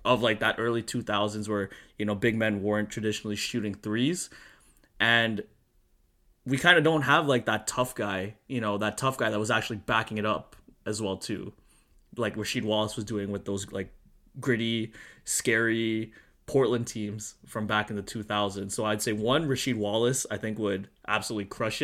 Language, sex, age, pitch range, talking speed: English, male, 20-39, 110-135 Hz, 180 wpm